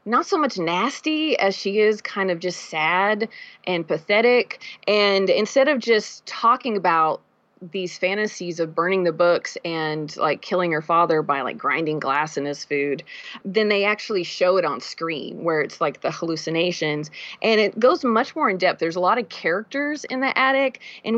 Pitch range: 175-245 Hz